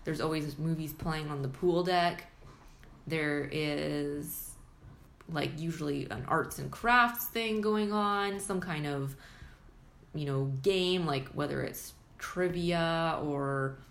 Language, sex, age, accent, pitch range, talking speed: English, female, 20-39, American, 145-175 Hz, 130 wpm